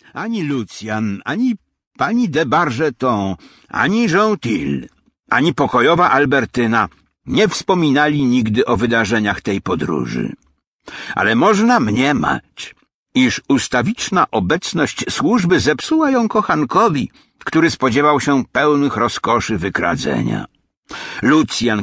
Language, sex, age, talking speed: English, male, 60-79, 100 wpm